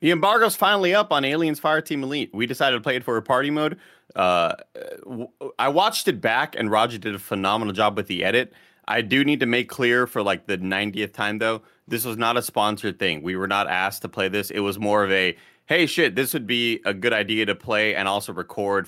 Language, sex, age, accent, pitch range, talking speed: English, male, 30-49, American, 100-130 Hz, 240 wpm